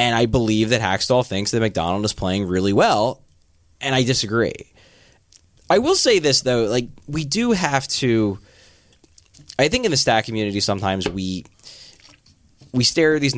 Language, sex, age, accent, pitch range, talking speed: English, male, 20-39, American, 95-130 Hz, 170 wpm